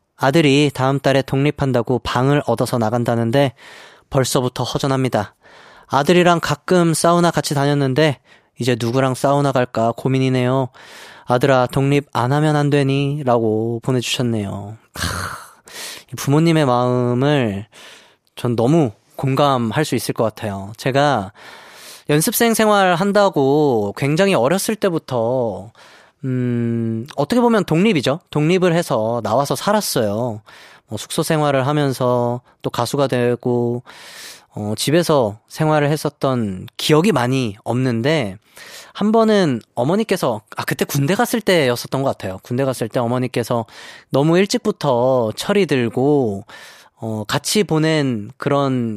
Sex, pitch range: male, 120-155 Hz